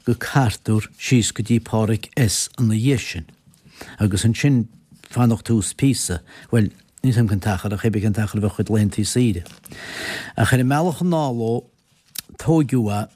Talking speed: 155 wpm